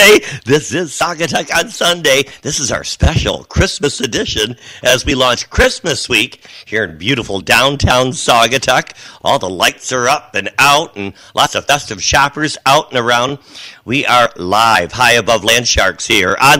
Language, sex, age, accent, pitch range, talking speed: English, male, 50-69, American, 105-170 Hz, 160 wpm